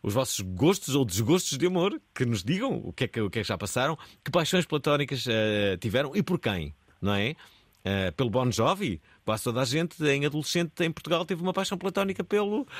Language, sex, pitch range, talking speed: Portuguese, male, 100-155 Hz, 220 wpm